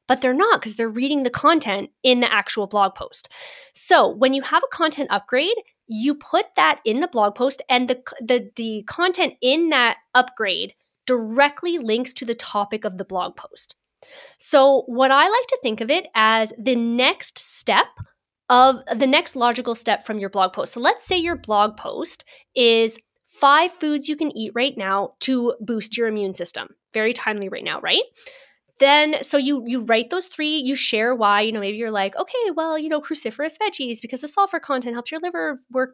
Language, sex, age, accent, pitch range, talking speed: English, female, 20-39, American, 220-295 Hz, 195 wpm